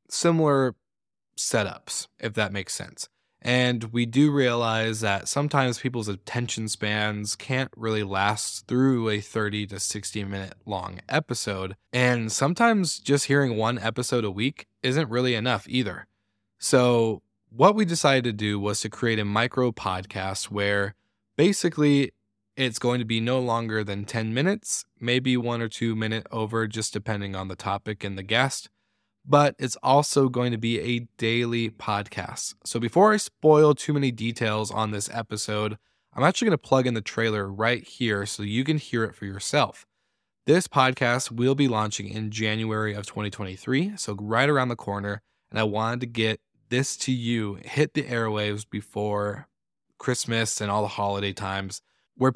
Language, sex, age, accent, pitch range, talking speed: English, male, 20-39, American, 105-130 Hz, 165 wpm